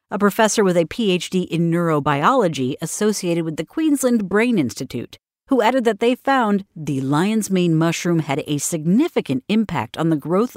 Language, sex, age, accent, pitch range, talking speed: English, female, 50-69, American, 160-220 Hz, 165 wpm